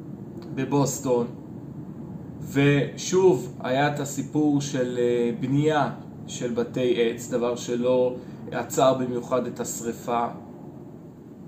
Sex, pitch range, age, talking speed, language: male, 130-165 Hz, 30-49, 80 wpm, Hebrew